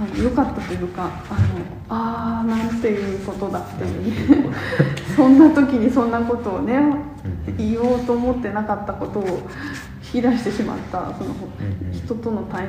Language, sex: Japanese, female